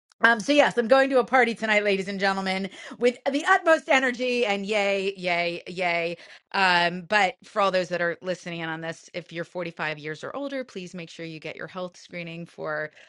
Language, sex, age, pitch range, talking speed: English, female, 30-49, 190-240 Hz, 210 wpm